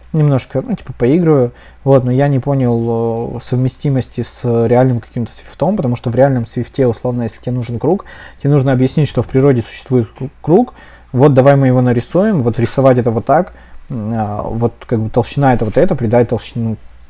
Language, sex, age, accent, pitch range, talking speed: Russian, male, 20-39, native, 115-135 Hz, 185 wpm